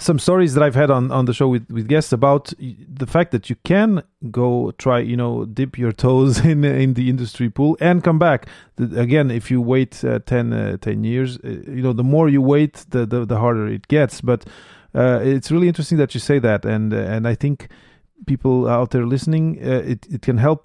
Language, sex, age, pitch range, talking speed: English, male, 30-49, 120-150 Hz, 225 wpm